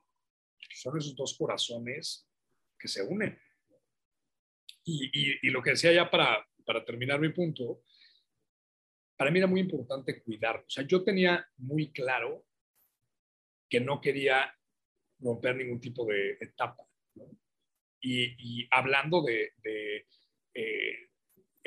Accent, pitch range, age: Mexican, 125-195 Hz, 40-59